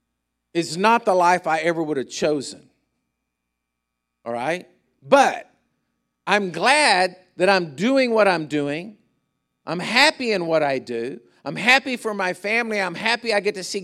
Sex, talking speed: male, 160 wpm